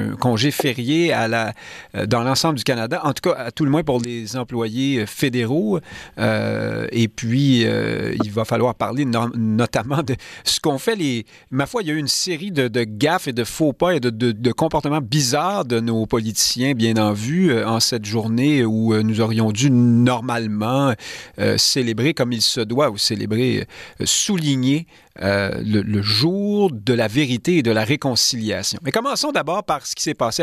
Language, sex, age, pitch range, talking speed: French, male, 40-59, 115-160 Hz, 195 wpm